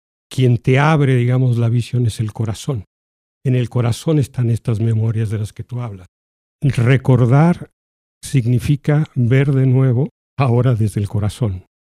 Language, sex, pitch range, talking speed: Spanish, male, 110-135 Hz, 145 wpm